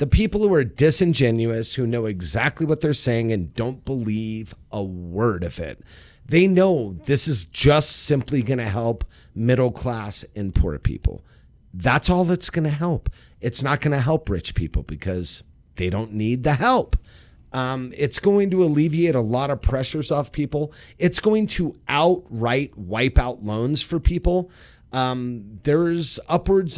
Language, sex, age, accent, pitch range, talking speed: English, male, 30-49, American, 110-150 Hz, 165 wpm